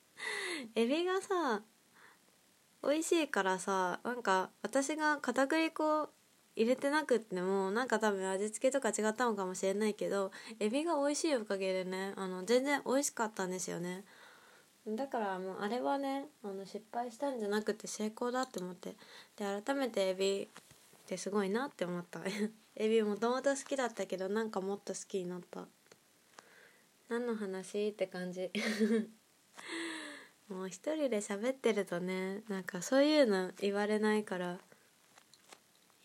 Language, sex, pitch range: Japanese, female, 195-245 Hz